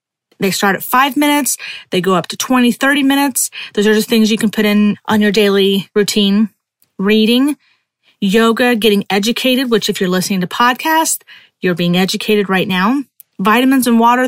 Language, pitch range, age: English, 205-265 Hz, 30-49